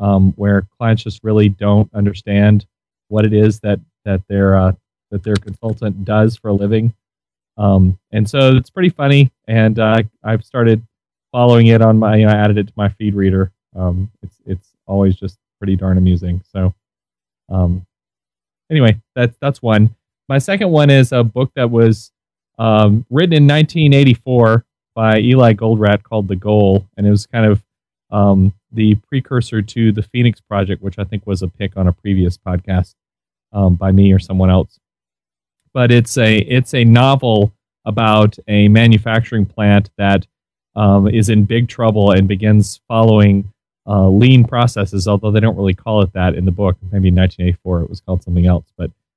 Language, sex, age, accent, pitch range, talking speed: English, male, 30-49, American, 95-115 Hz, 175 wpm